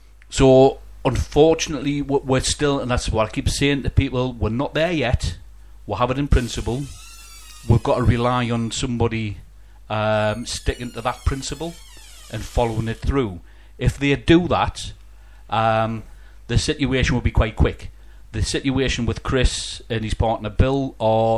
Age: 40-59